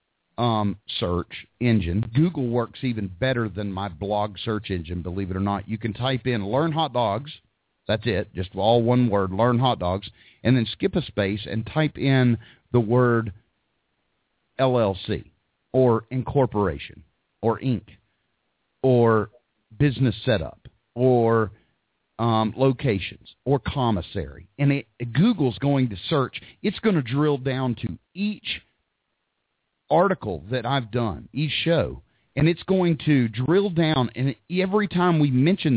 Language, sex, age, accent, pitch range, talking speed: English, male, 40-59, American, 110-140 Hz, 140 wpm